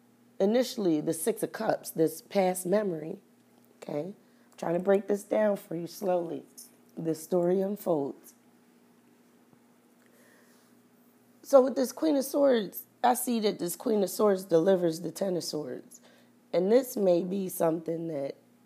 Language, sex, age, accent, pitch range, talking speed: English, female, 30-49, American, 145-205 Hz, 145 wpm